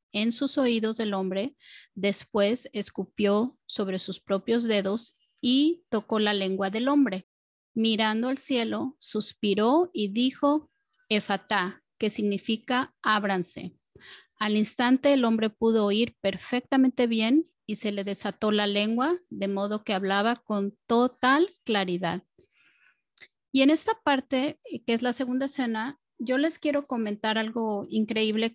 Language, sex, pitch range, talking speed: Spanish, female, 205-260 Hz, 130 wpm